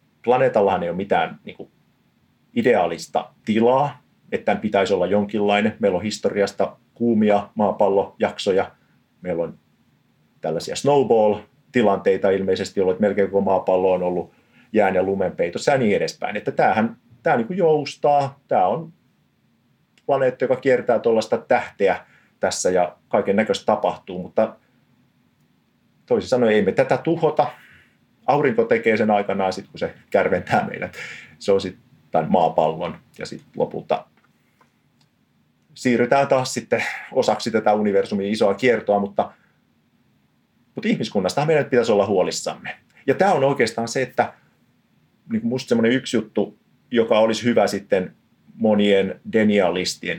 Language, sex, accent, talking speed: Finnish, male, native, 125 wpm